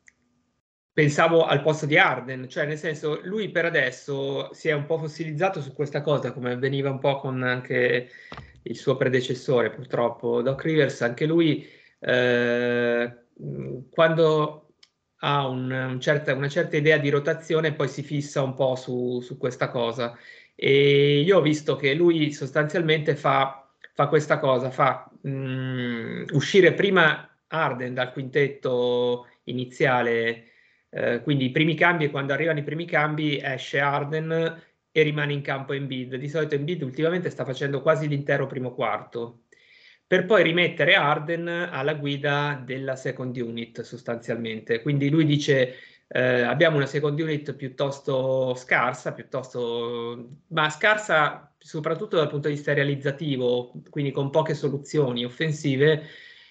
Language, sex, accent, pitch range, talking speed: Italian, male, native, 130-155 Hz, 135 wpm